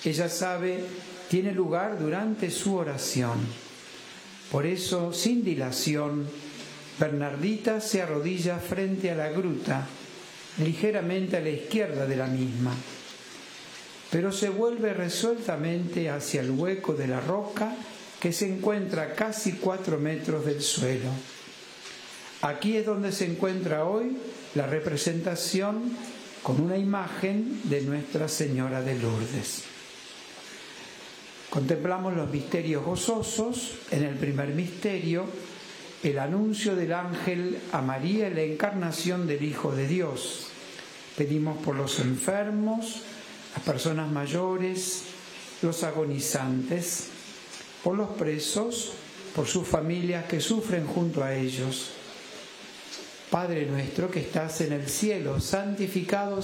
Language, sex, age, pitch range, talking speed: Spanish, male, 60-79, 150-195 Hz, 115 wpm